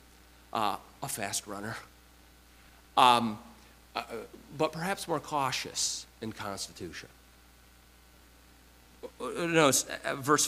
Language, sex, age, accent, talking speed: English, male, 50-69, American, 80 wpm